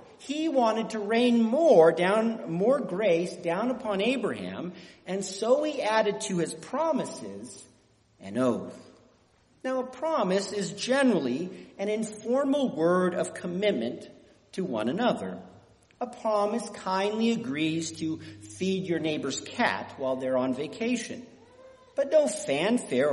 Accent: American